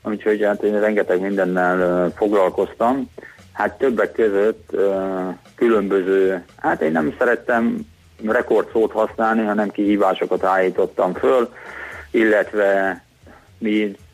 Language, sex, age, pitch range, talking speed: Hungarian, male, 30-49, 85-105 Hz, 100 wpm